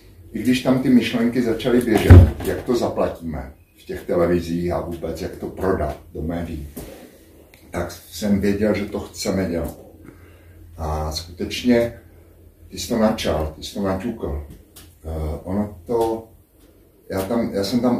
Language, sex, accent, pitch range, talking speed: Czech, male, native, 85-105 Hz, 150 wpm